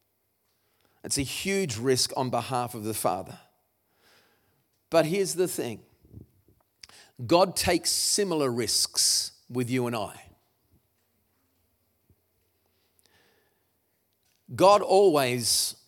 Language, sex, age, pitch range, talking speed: English, male, 50-69, 110-160 Hz, 85 wpm